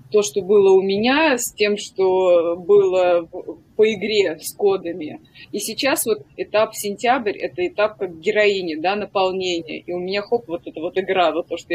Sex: female